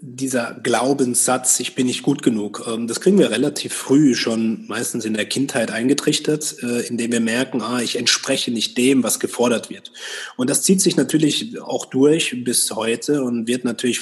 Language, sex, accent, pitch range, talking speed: German, male, German, 120-150 Hz, 175 wpm